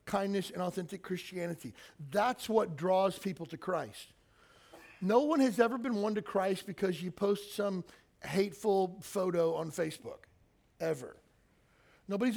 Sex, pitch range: male, 170-215 Hz